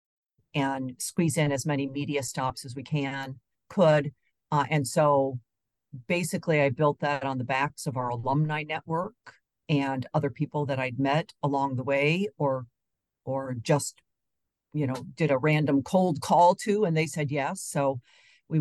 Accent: American